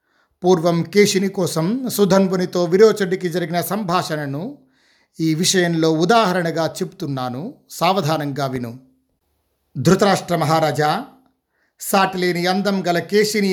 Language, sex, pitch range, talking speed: Telugu, male, 150-195 Hz, 90 wpm